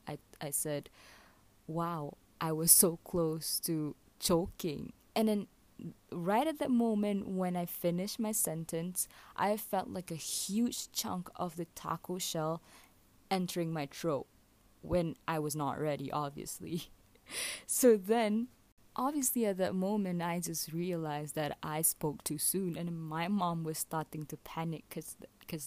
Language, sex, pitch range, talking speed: English, female, 160-220 Hz, 145 wpm